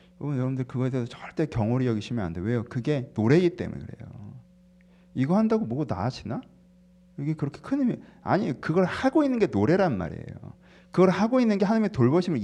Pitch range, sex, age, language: 135-185 Hz, male, 40-59, Korean